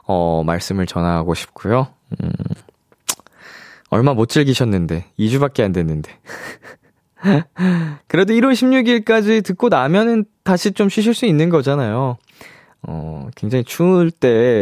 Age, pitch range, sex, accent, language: 20-39, 100-165 Hz, male, native, Korean